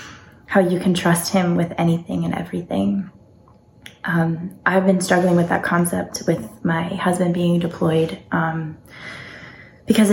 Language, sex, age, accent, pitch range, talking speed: English, female, 20-39, American, 170-190 Hz, 135 wpm